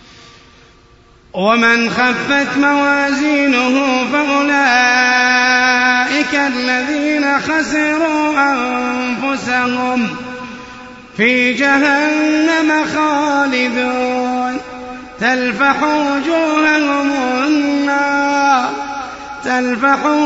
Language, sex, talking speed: Arabic, male, 40 wpm